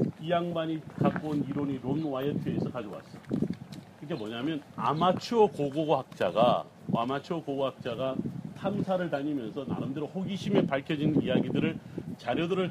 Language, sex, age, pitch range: Korean, male, 40-59, 140-180 Hz